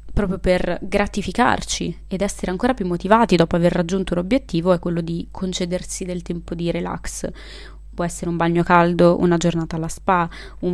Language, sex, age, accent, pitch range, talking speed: Italian, female, 20-39, native, 170-190 Hz, 170 wpm